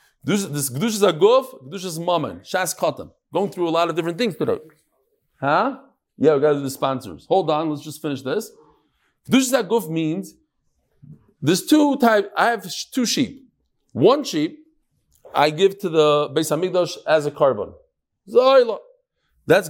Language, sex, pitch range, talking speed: English, male, 155-250 Hz, 150 wpm